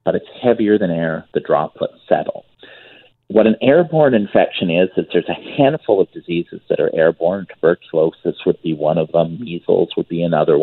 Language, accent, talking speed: English, American, 180 wpm